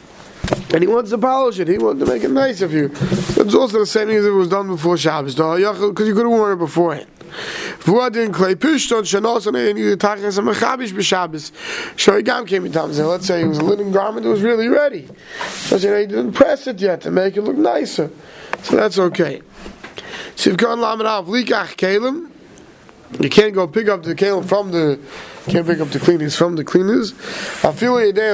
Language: Hebrew